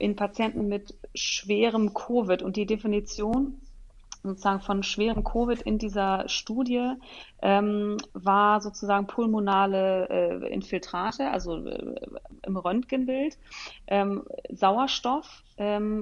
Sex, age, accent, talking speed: female, 30-49, German, 105 wpm